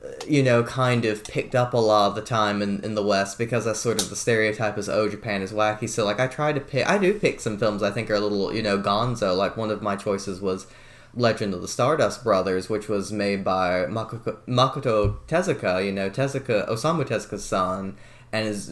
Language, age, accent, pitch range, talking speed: English, 20-39, American, 100-120 Hz, 225 wpm